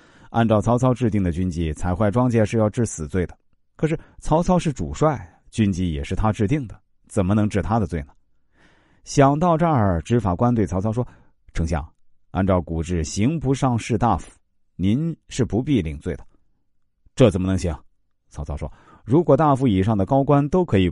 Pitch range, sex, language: 85-115 Hz, male, Chinese